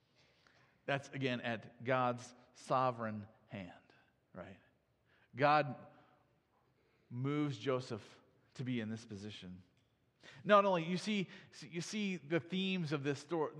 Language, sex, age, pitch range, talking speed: English, male, 40-59, 135-180 Hz, 115 wpm